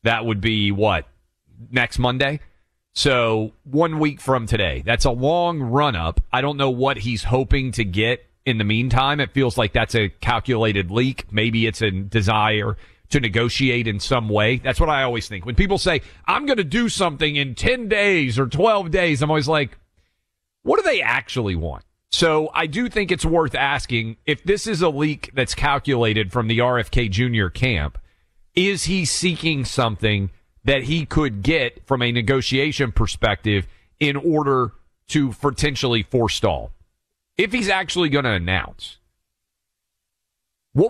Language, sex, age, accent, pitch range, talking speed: English, male, 40-59, American, 110-155 Hz, 165 wpm